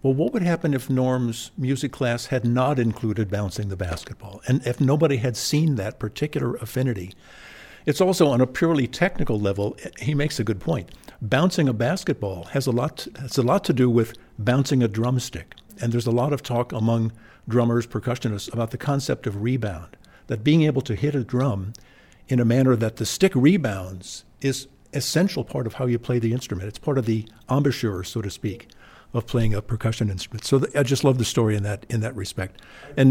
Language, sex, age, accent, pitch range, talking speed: English, male, 50-69, American, 110-135 Hz, 205 wpm